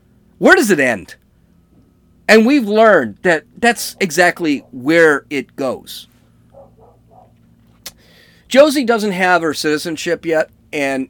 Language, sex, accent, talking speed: English, male, American, 110 wpm